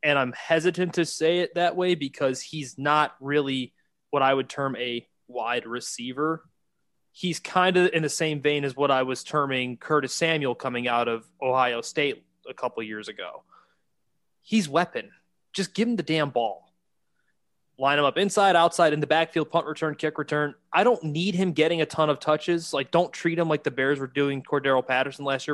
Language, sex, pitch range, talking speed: English, male, 130-165 Hz, 200 wpm